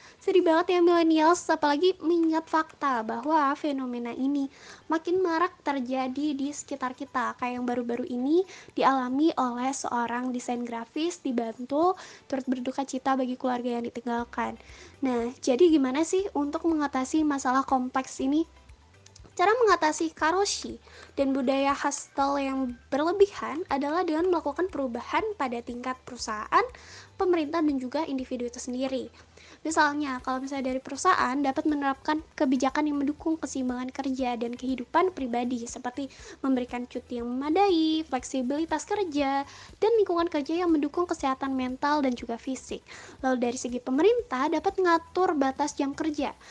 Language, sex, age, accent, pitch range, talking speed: Indonesian, female, 20-39, native, 255-320 Hz, 135 wpm